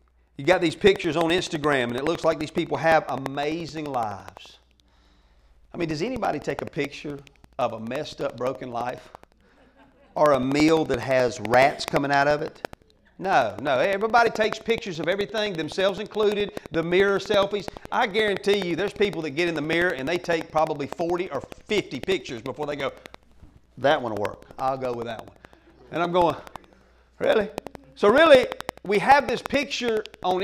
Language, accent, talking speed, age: English, American, 180 wpm, 40-59